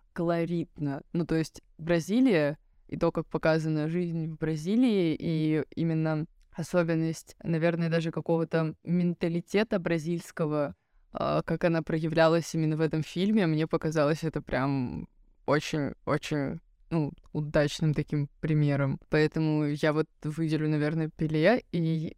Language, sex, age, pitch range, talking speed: Russian, female, 20-39, 150-165 Hz, 115 wpm